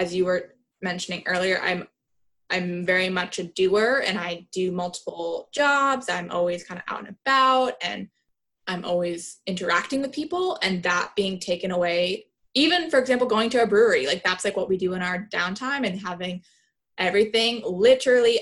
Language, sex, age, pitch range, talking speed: English, female, 20-39, 180-220 Hz, 175 wpm